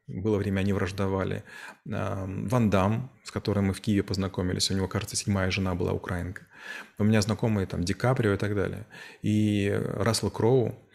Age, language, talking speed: 30-49, Russian, 170 wpm